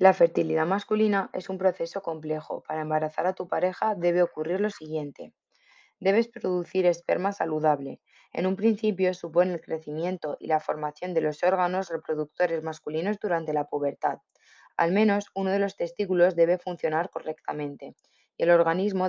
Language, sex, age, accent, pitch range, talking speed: Spanish, female, 20-39, Spanish, 155-190 Hz, 155 wpm